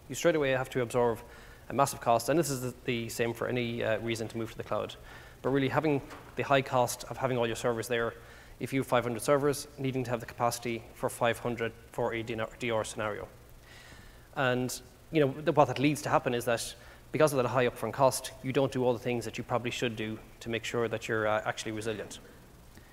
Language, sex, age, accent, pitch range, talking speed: English, male, 20-39, Irish, 115-135 Hz, 225 wpm